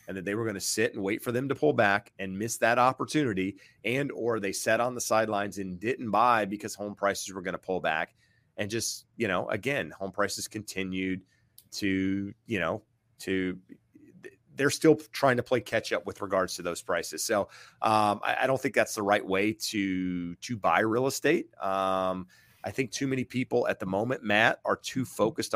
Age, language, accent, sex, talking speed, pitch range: 30-49, English, American, male, 205 wpm, 95-115 Hz